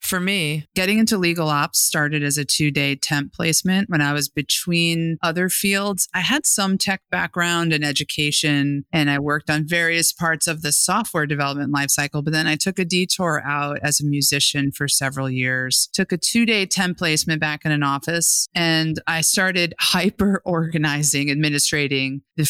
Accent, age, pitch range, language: American, 30-49, 145-180 Hz, English